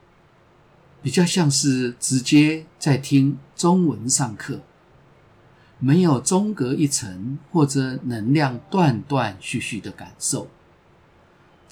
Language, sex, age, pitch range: Chinese, male, 50-69, 120-155 Hz